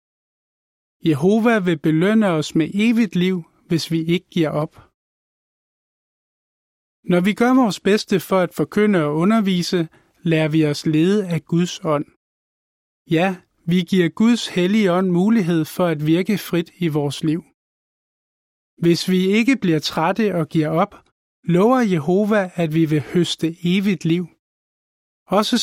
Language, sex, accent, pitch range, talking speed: Danish, male, native, 160-200 Hz, 140 wpm